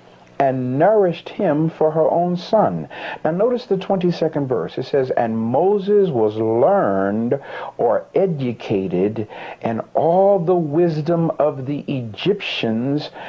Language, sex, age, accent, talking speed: English, male, 60-79, American, 120 wpm